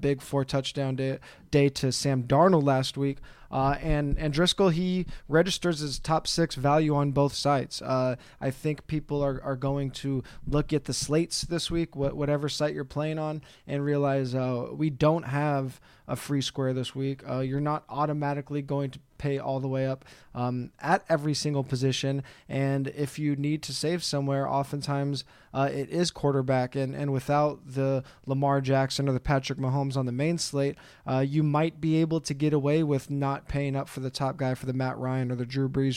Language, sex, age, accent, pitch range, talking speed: English, male, 20-39, American, 135-155 Hz, 200 wpm